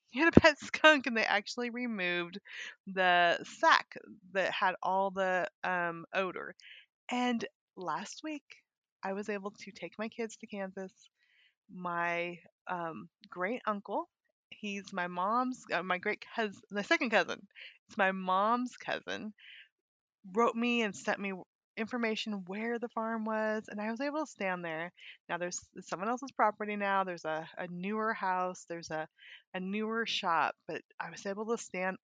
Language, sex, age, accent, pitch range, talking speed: English, female, 20-39, American, 185-230 Hz, 160 wpm